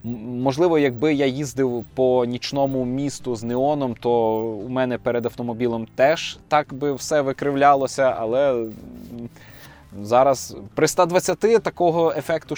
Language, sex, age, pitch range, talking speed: Ukrainian, male, 20-39, 115-150 Hz, 120 wpm